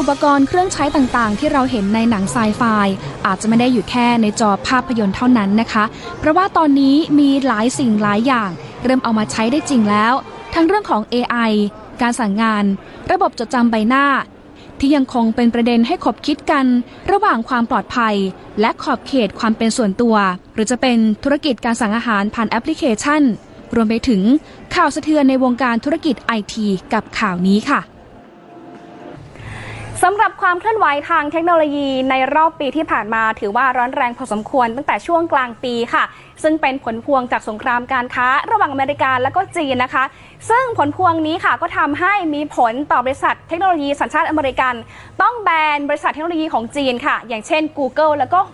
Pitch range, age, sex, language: 230-305 Hz, 20-39, female, Thai